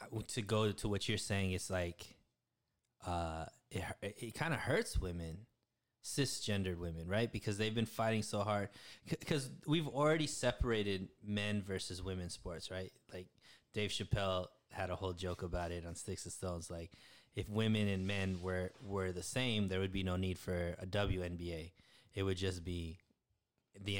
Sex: male